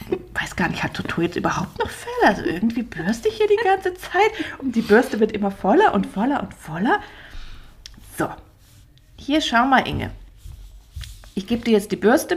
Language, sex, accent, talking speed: German, female, German, 185 wpm